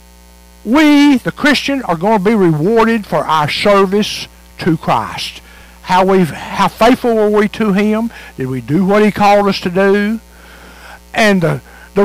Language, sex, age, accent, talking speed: English, male, 60-79, American, 165 wpm